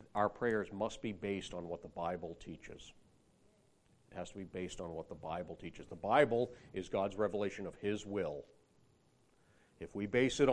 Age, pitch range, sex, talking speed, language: 40-59, 95-135 Hz, male, 180 wpm, English